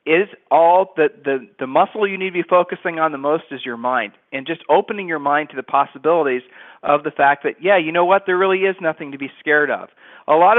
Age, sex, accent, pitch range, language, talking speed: 40-59, male, American, 140-175 Hz, English, 245 wpm